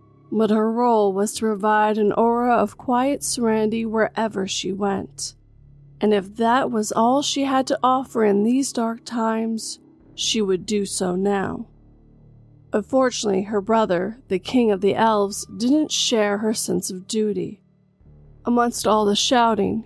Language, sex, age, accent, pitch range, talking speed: English, female, 30-49, American, 195-225 Hz, 150 wpm